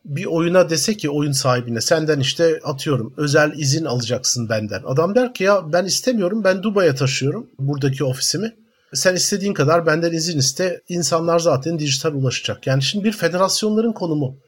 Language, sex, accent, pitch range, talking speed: Turkish, male, native, 135-180 Hz, 160 wpm